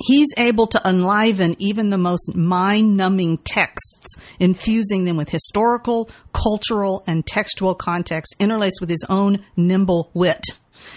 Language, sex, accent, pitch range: English, female, American, 165-200 Hz